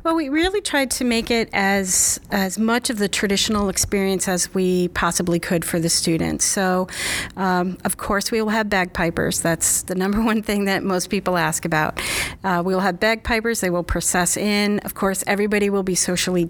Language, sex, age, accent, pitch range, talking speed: English, female, 40-59, American, 185-225 Hz, 195 wpm